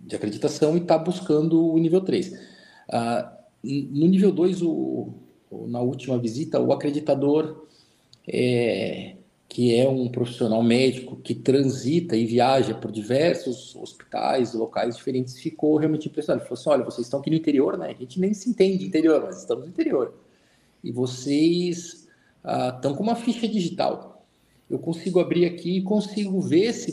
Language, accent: Portuguese, Brazilian